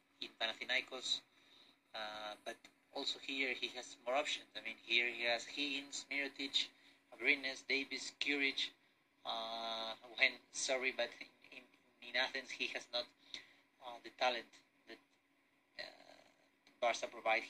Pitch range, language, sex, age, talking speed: 115-135 Hz, Greek, male, 30-49, 125 wpm